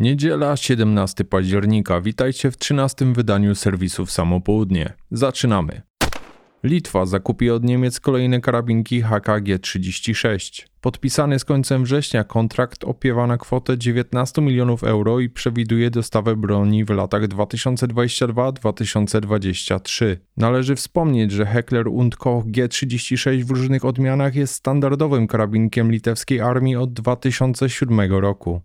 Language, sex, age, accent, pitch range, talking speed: Polish, male, 20-39, native, 105-135 Hz, 115 wpm